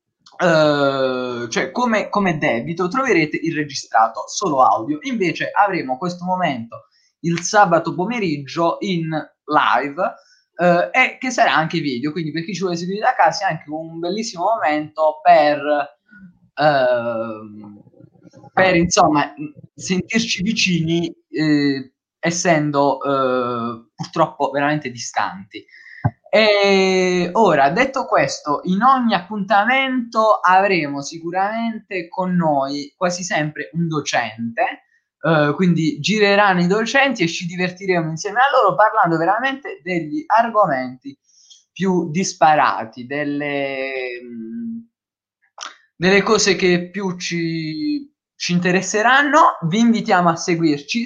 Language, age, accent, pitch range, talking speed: Italian, 20-39, native, 150-205 Hz, 110 wpm